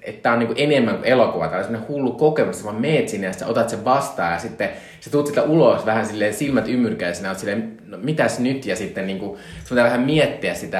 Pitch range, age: 80-110 Hz, 20-39